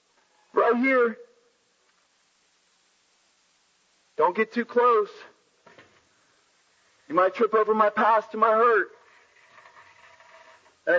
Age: 40-59